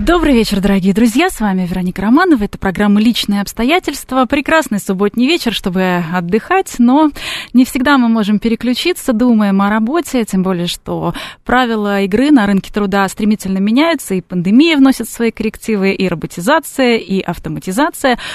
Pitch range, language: 195-265 Hz, Russian